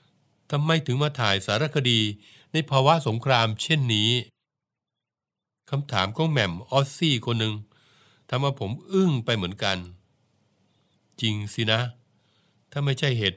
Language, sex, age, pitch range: Thai, male, 60-79, 105-140 Hz